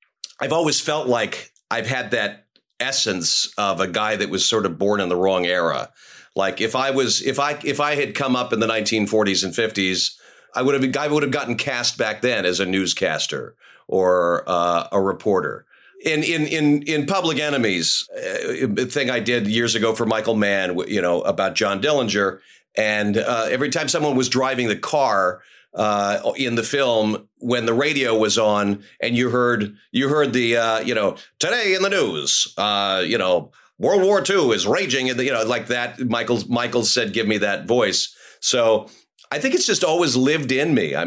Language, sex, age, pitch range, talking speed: English, male, 40-59, 105-135 Hz, 195 wpm